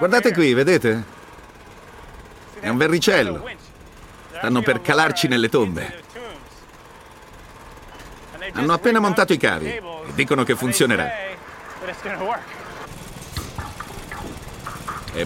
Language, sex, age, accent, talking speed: Italian, male, 50-69, native, 85 wpm